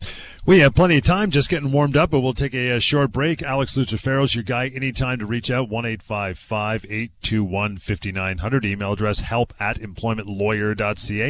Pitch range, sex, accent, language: 100-130 Hz, male, American, English